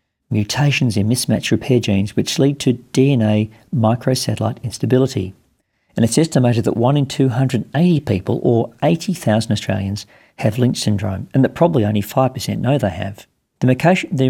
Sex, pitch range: male, 105-130 Hz